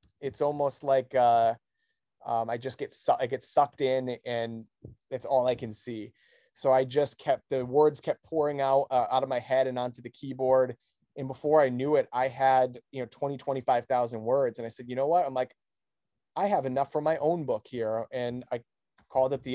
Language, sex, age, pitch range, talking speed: English, male, 30-49, 125-140 Hz, 215 wpm